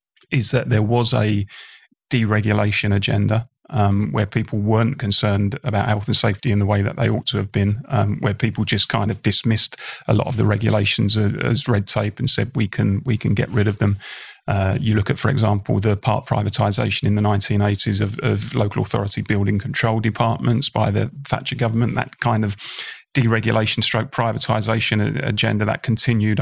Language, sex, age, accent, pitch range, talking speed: English, male, 30-49, British, 105-125 Hz, 190 wpm